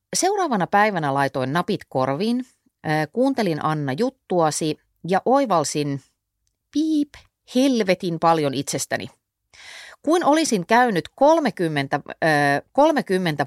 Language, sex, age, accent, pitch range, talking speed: Finnish, female, 30-49, native, 140-215 Hz, 85 wpm